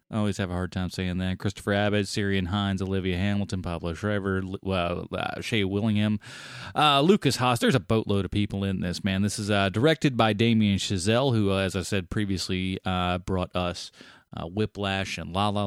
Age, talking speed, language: 30-49, 195 wpm, English